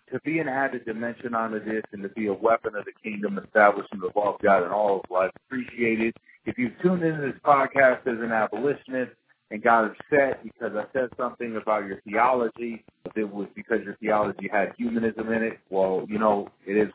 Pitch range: 105-125 Hz